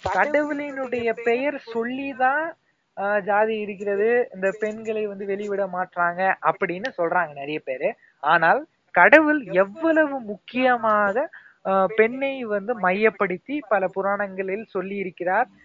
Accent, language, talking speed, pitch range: native, Tamil, 100 wpm, 185-245 Hz